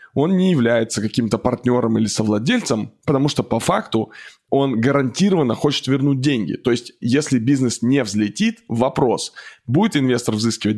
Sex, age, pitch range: male, 20-39, 115-140 Hz